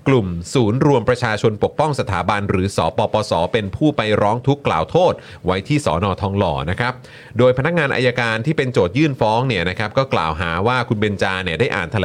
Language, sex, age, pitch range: Thai, male, 30-49, 95-130 Hz